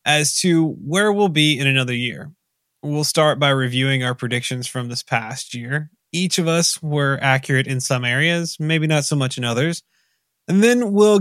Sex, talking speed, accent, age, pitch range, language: male, 185 wpm, American, 20-39, 130-165 Hz, English